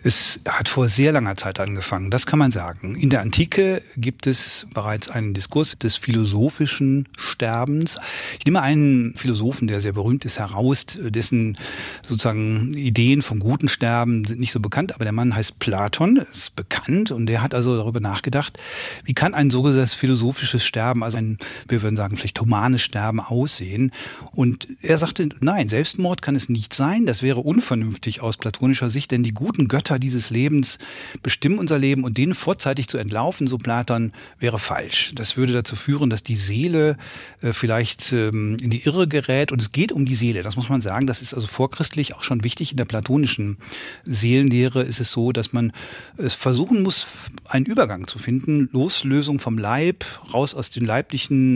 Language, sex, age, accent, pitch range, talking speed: German, male, 40-59, German, 115-140 Hz, 180 wpm